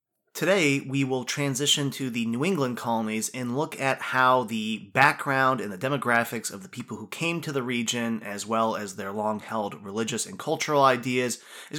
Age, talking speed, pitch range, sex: 20-39, 190 wpm, 120-155 Hz, male